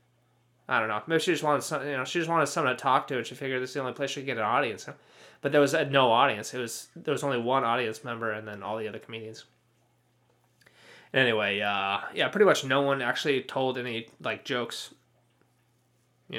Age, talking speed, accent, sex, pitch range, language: 20-39, 240 wpm, American, male, 120-140 Hz, English